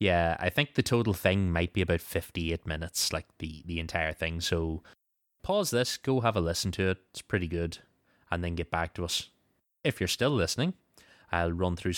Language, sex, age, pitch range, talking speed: English, male, 20-39, 85-105 Hz, 205 wpm